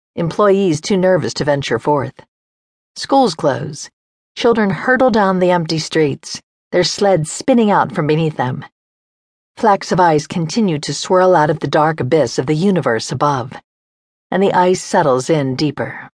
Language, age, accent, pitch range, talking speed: English, 50-69, American, 140-195 Hz, 155 wpm